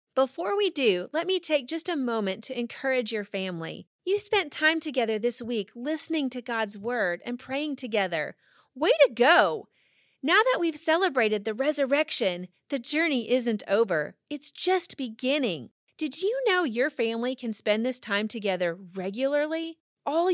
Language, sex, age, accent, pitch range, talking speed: English, female, 30-49, American, 225-315 Hz, 160 wpm